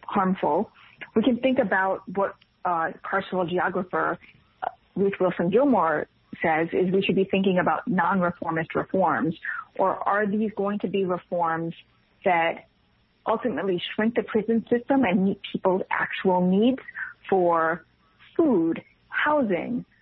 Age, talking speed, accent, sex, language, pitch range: 40-59, 130 wpm, American, female, English, 175-210 Hz